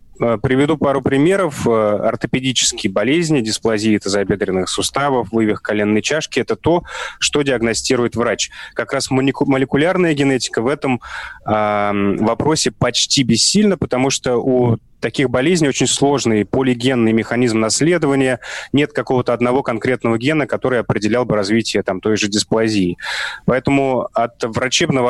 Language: Russian